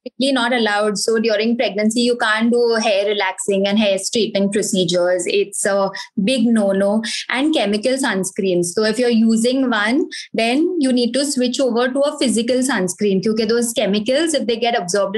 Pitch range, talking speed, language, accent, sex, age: 205-255 Hz, 180 wpm, Hindi, native, female, 20-39